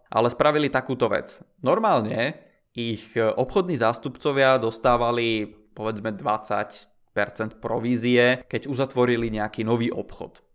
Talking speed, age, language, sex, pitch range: 95 wpm, 20-39, Czech, male, 115-130 Hz